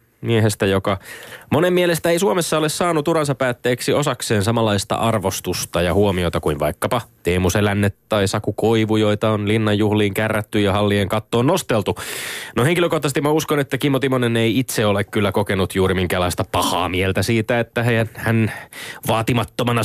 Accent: native